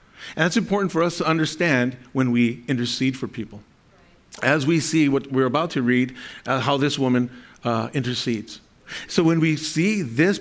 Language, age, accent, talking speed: English, 50-69, American, 180 wpm